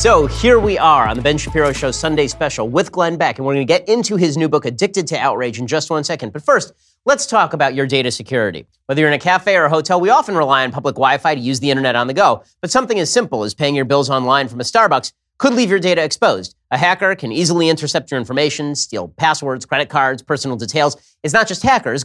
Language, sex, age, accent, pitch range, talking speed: English, male, 30-49, American, 135-175 Hz, 255 wpm